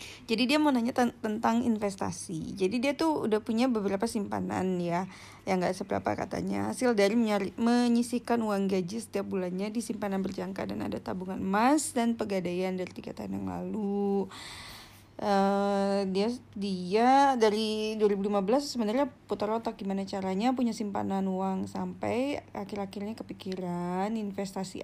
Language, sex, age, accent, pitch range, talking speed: Indonesian, female, 30-49, native, 185-230 Hz, 135 wpm